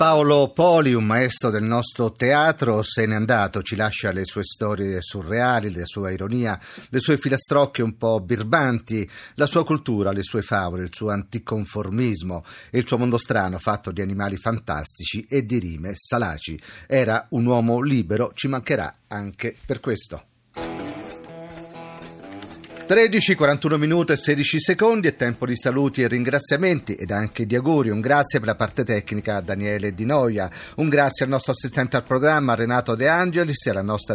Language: Italian